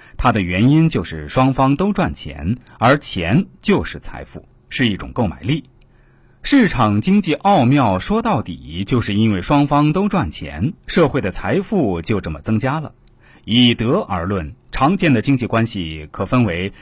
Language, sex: Chinese, male